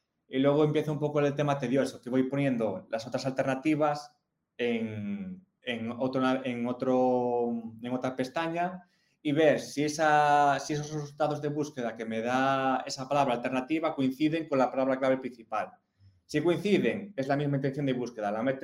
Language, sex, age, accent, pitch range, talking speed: Spanish, male, 20-39, Spanish, 120-145 Hz, 170 wpm